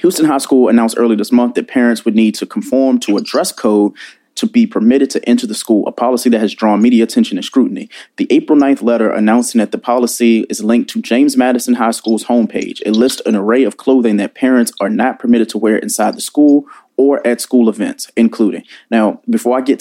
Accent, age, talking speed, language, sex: American, 30-49, 225 wpm, English, male